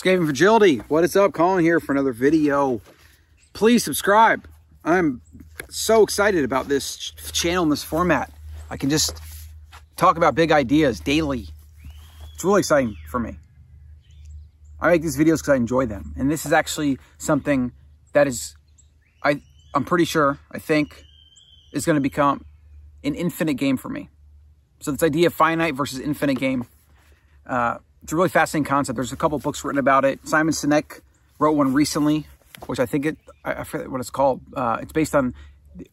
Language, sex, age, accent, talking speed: English, male, 30-49, American, 170 wpm